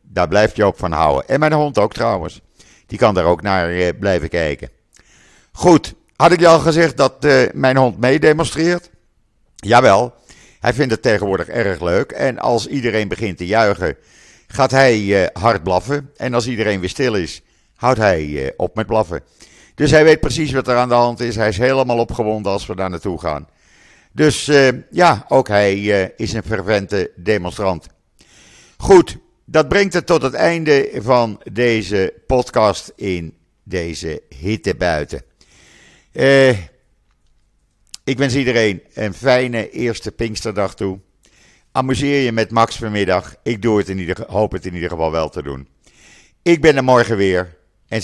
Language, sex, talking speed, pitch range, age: Dutch, male, 170 wpm, 95-135 Hz, 50-69